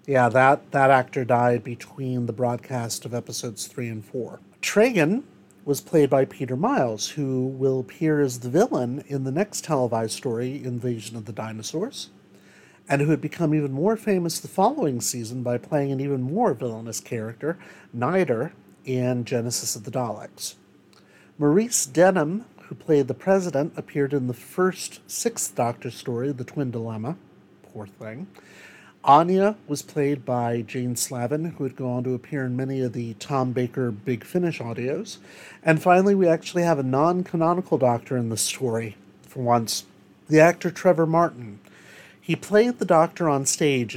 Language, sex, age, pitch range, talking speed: English, male, 50-69, 120-155 Hz, 160 wpm